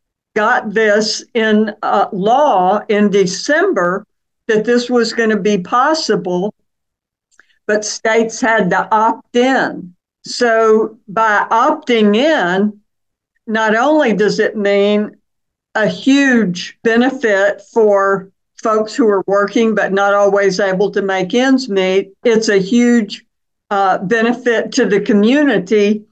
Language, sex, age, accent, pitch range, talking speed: English, female, 60-79, American, 200-235 Hz, 120 wpm